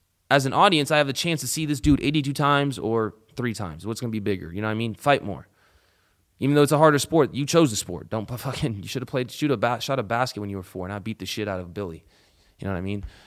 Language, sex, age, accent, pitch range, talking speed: English, male, 20-39, American, 100-145 Hz, 300 wpm